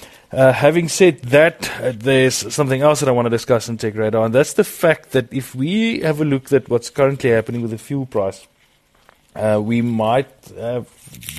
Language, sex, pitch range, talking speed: English, male, 110-130 Hz, 195 wpm